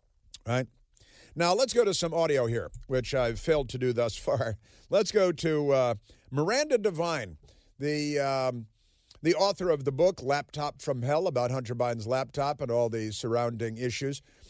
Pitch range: 125-165 Hz